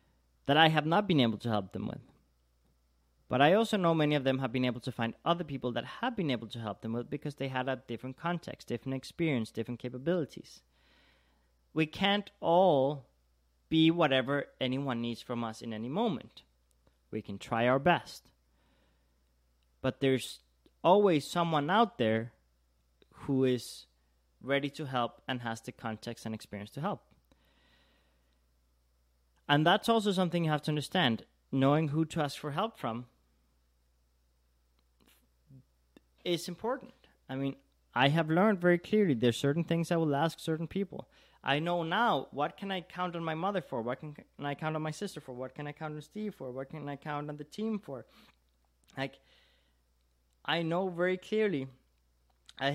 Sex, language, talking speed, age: male, English, 175 wpm, 30-49